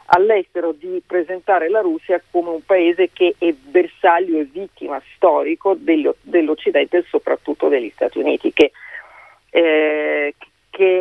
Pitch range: 155-215 Hz